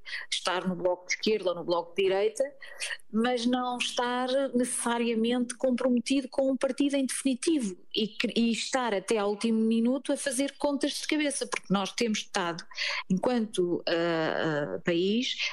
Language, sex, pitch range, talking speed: Portuguese, female, 210-270 Hz, 145 wpm